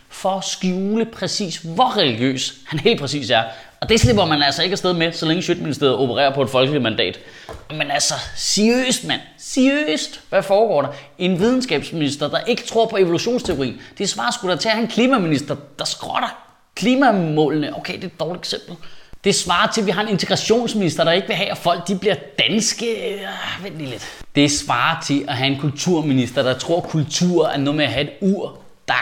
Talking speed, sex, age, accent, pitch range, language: 205 wpm, male, 30-49, native, 135-195 Hz, Danish